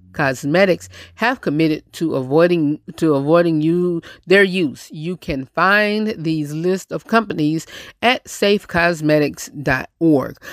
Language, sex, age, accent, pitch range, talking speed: English, female, 30-49, American, 155-200 Hz, 110 wpm